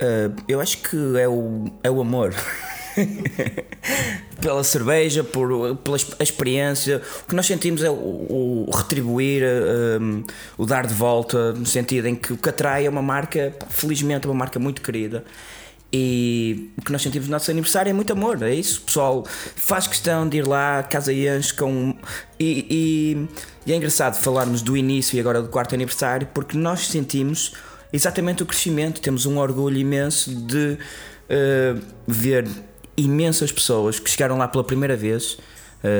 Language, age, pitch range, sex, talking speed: Portuguese, 20-39, 120-150 Hz, male, 165 wpm